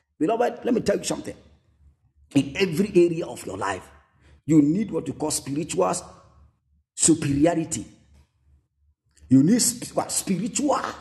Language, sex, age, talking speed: Spanish, male, 50-69, 120 wpm